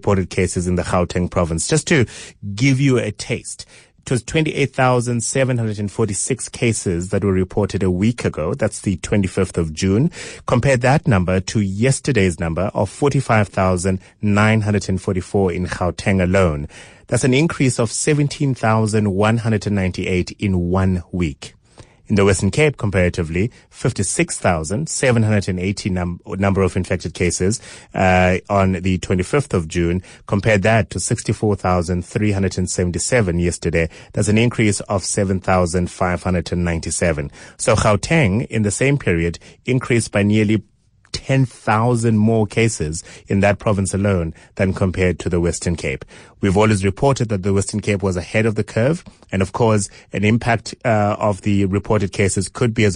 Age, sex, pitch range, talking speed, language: 30-49, male, 90-110 Hz, 160 wpm, English